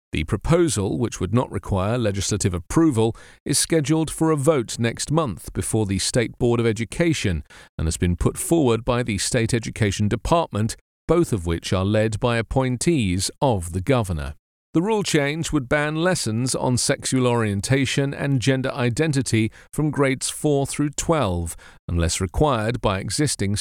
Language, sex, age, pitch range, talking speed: English, male, 40-59, 105-150 Hz, 160 wpm